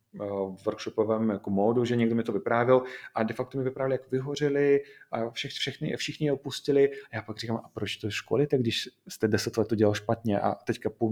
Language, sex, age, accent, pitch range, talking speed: Czech, male, 30-49, native, 105-130 Hz, 215 wpm